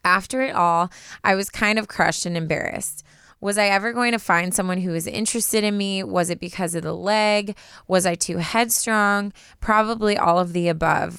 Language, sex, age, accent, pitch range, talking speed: English, female, 20-39, American, 170-200 Hz, 200 wpm